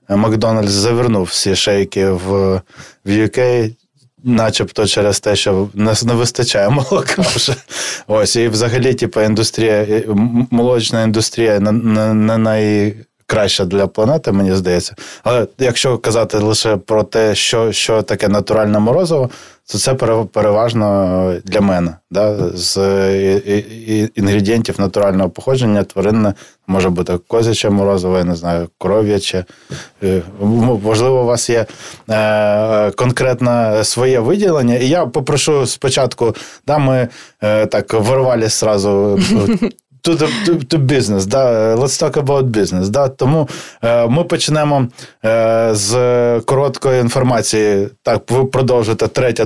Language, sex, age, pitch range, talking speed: Ukrainian, male, 20-39, 105-125 Hz, 120 wpm